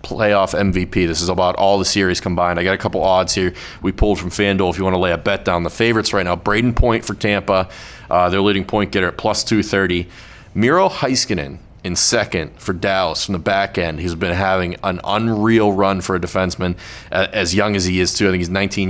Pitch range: 90-105 Hz